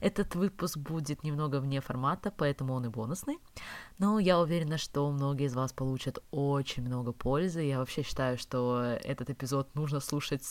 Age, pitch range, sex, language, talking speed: 20-39, 125-165 Hz, female, Russian, 165 wpm